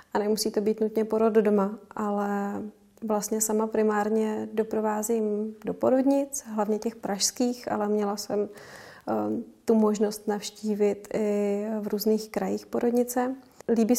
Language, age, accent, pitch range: Czech, 30-49, native, 215-235 Hz